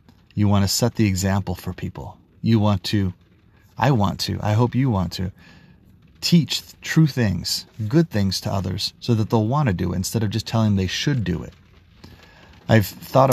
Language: English